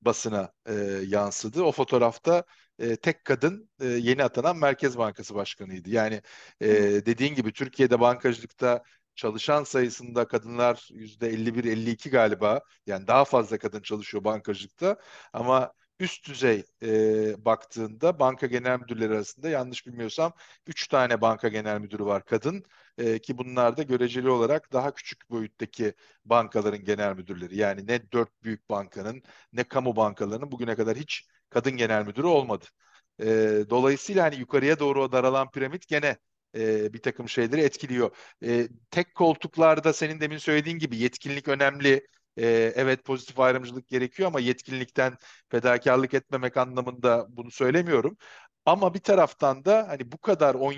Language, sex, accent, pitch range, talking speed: Turkish, male, native, 115-140 Hz, 140 wpm